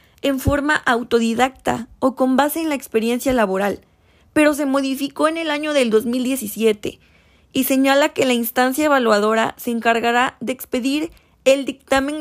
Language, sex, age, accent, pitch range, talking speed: Spanish, female, 20-39, Mexican, 225-275 Hz, 145 wpm